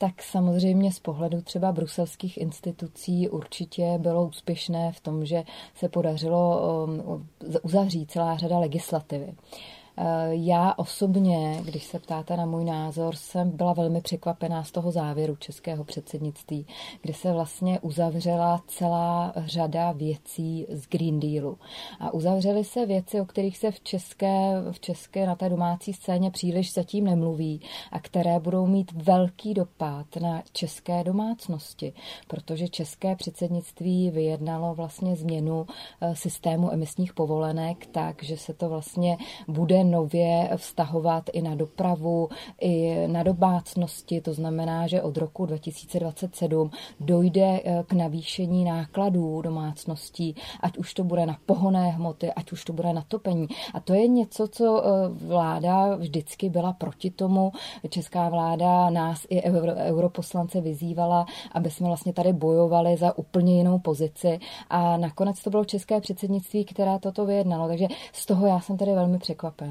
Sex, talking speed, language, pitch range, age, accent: female, 140 wpm, Czech, 165-185 Hz, 30-49, native